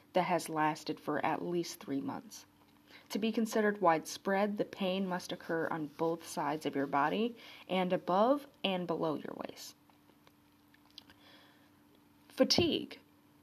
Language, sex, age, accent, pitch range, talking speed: English, female, 30-49, American, 160-205 Hz, 130 wpm